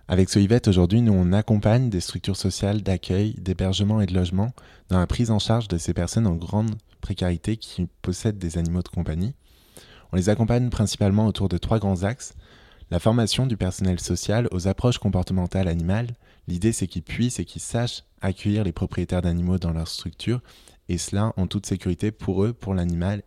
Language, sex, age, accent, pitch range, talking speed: French, male, 20-39, French, 90-105 Hz, 190 wpm